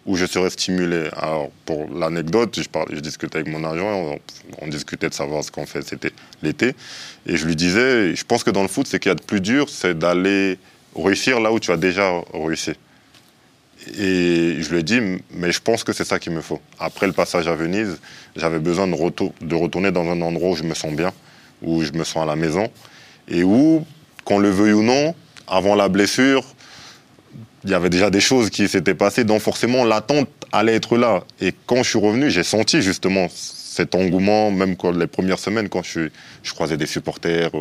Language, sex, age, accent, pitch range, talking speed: French, male, 20-39, French, 85-100 Hz, 215 wpm